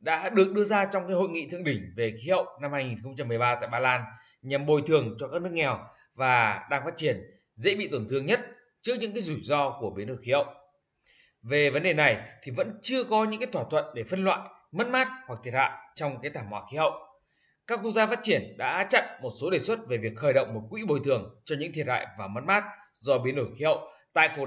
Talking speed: 255 wpm